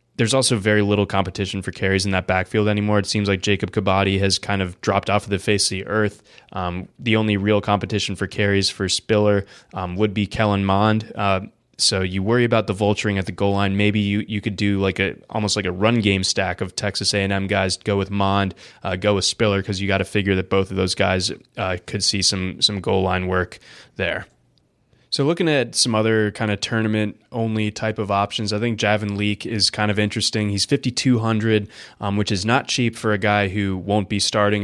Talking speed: 220 wpm